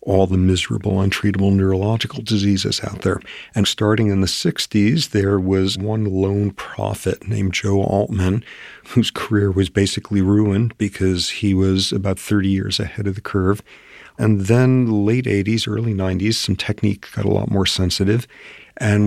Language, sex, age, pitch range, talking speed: English, male, 50-69, 95-110 Hz, 155 wpm